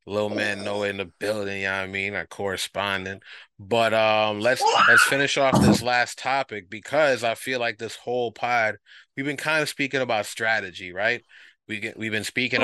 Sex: male